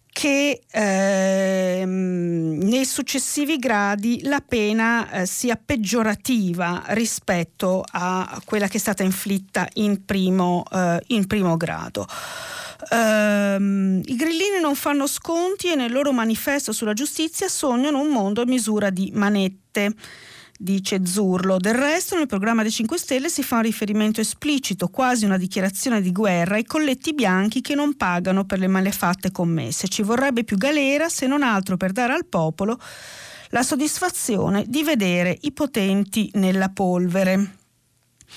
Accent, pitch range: native, 190-265 Hz